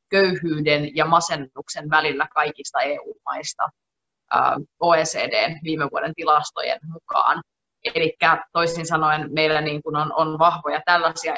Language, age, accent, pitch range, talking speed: Finnish, 20-39, native, 160-195 Hz, 100 wpm